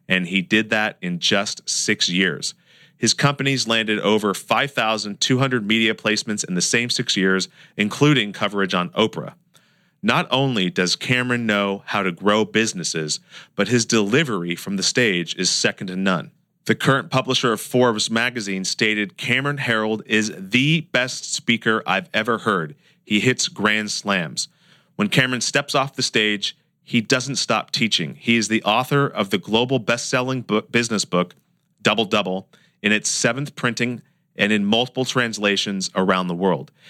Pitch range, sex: 100-130 Hz, male